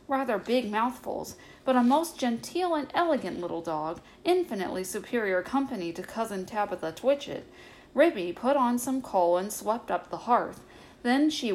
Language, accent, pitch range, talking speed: English, American, 190-255 Hz, 155 wpm